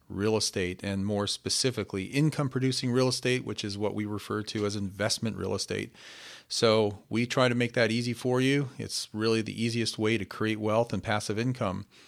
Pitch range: 105-125 Hz